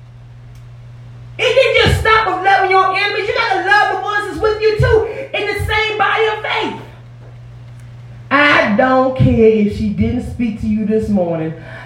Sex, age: female, 30-49